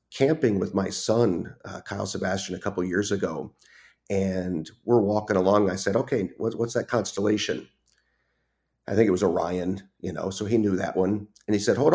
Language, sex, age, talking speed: English, male, 40-59, 195 wpm